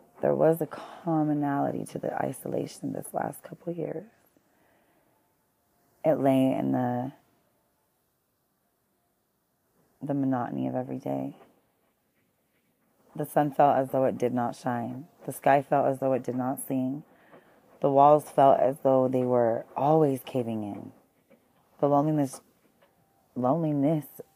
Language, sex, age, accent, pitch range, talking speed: English, female, 30-49, American, 130-150 Hz, 130 wpm